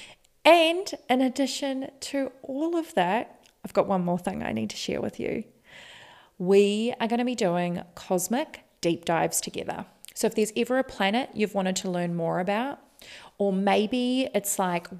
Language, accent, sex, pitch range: English, Australian, female, 185-235 Hz